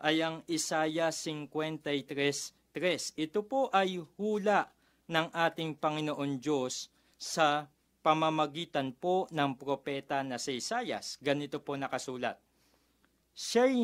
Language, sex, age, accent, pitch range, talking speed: Filipino, male, 40-59, native, 145-195 Hz, 105 wpm